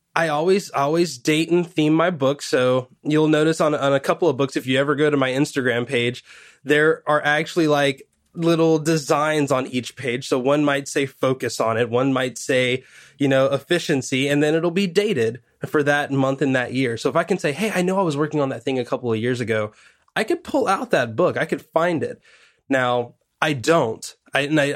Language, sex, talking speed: English, male, 225 wpm